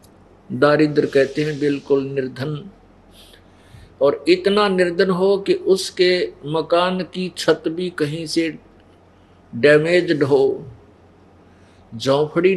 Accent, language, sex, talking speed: native, Hindi, male, 95 wpm